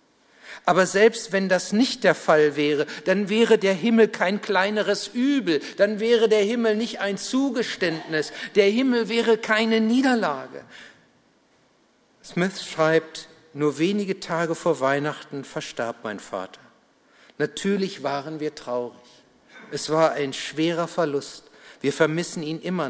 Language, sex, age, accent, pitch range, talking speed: German, male, 60-79, German, 175-225 Hz, 130 wpm